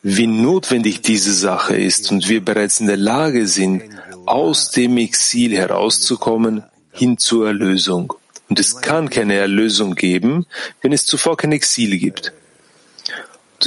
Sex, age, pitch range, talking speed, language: male, 40-59, 105-130 Hz, 140 wpm, German